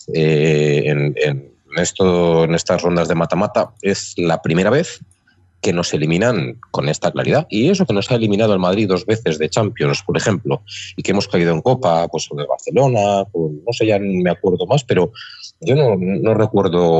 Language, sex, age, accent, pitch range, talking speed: Spanish, male, 30-49, Spanish, 80-110 Hz, 190 wpm